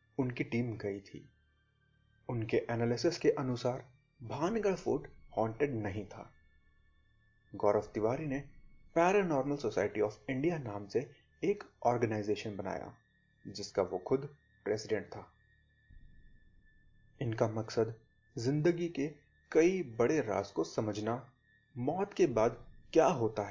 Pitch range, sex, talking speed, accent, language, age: 105-145 Hz, male, 110 wpm, native, Hindi, 30-49